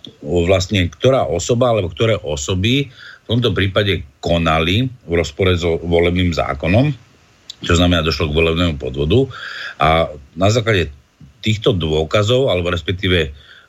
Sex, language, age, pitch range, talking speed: male, Slovak, 50-69, 75-95 Hz, 125 wpm